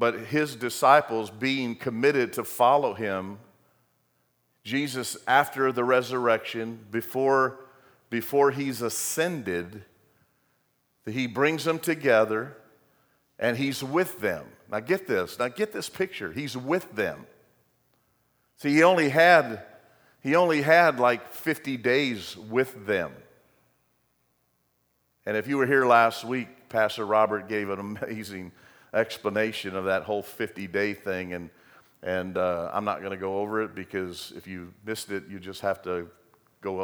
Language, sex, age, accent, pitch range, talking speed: English, male, 50-69, American, 95-135 Hz, 140 wpm